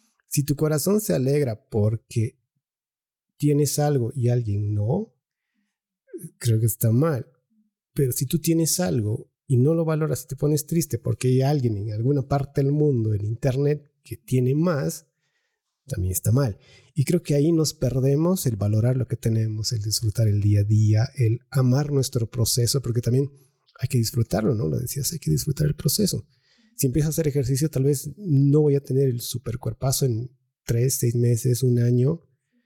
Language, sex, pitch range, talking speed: Spanish, male, 120-150 Hz, 180 wpm